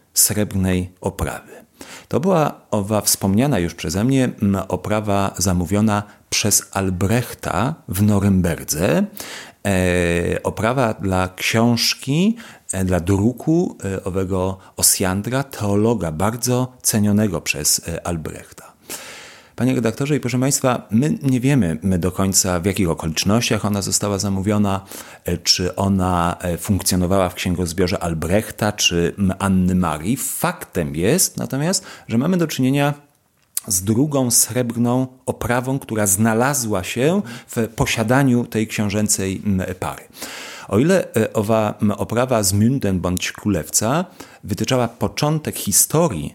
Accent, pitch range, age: native, 95-125 Hz, 40-59